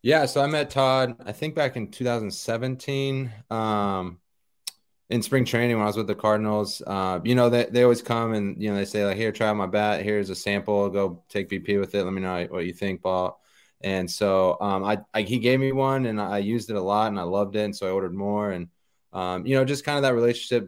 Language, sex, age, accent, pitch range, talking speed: English, male, 20-39, American, 95-110 Hz, 245 wpm